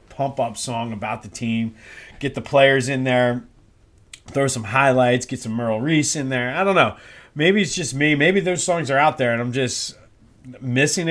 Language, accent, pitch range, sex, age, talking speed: English, American, 115-150 Hz, male, 30-49, 200 wpm